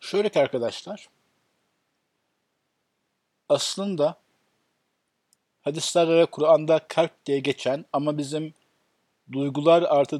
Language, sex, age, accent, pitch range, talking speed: Turkish, male, 50-69, native, 135-165 Hz, 75 wpm